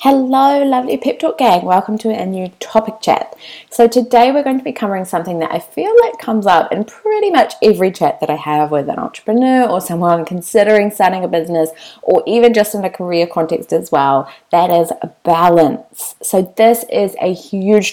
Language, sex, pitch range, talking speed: English, female, 170-245 Hz, 200 wpm